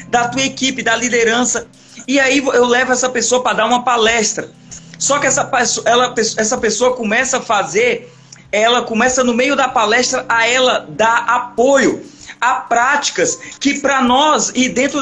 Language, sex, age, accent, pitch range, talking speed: Portuguese, male, 20-39, Brazilian, 230-260 Hz, 165 wpm